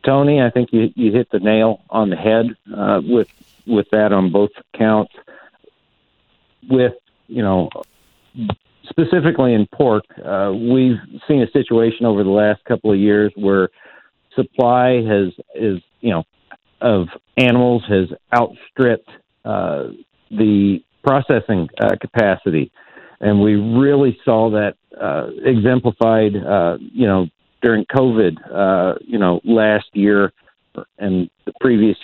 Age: 50-69